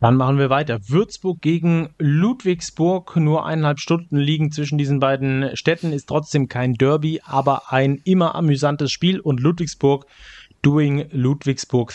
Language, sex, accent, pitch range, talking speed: German, male, German, 130-155 Hz, 140 wpm